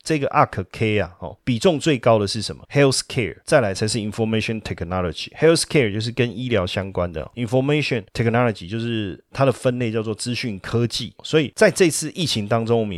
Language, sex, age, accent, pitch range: Chinese, male, 30-49, native, 100-130 Hz